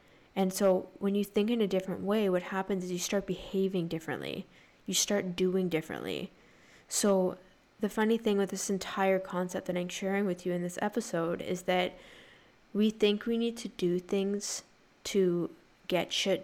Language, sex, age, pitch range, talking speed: English, female, 10-29, 180-200 Hz, 175 wpm